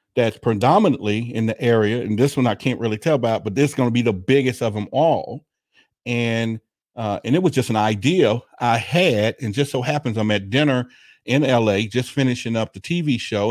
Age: 50-69